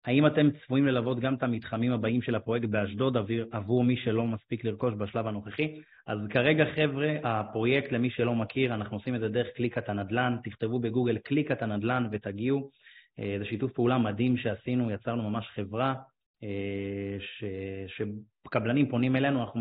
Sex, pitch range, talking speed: male, 110-135 Hz, 155 wpm